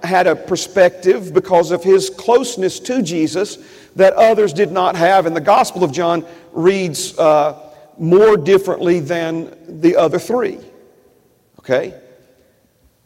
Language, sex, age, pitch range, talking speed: English, male, 40-59, 175-225 Hz, 130 wpm